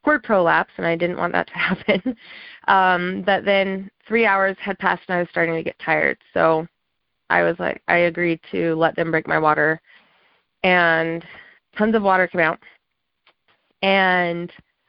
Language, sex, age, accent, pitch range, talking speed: English, female, 20-39, American, 170-200 Hz, 170 wpm